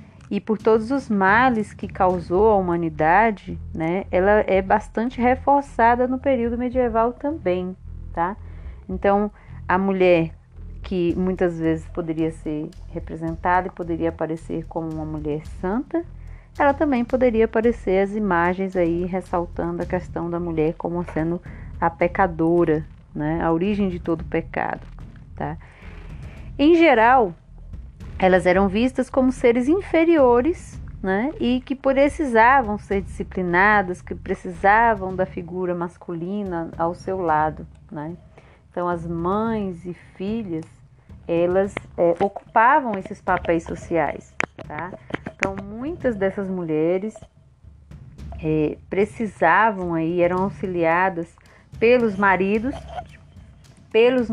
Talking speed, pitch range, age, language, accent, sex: 115 wpm, 165-225 Hz, 30-49, Portuguese, Brazilian, female